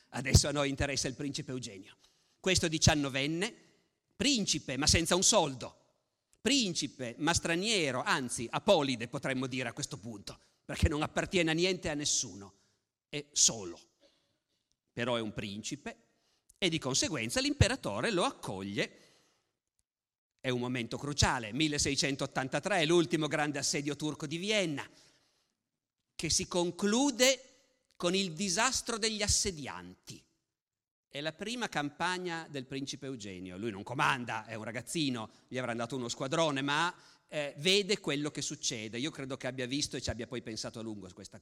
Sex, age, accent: male, 50-69, native